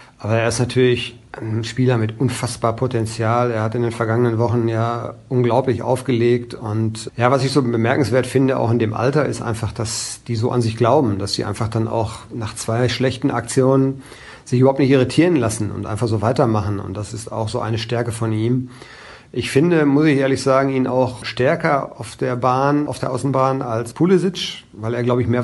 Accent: German